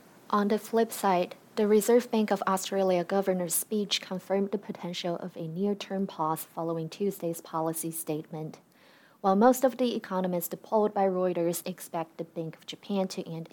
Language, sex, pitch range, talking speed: English, female, 175-210 Hz, 165 wpm